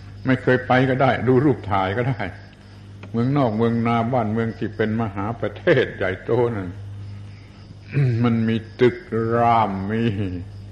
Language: Thai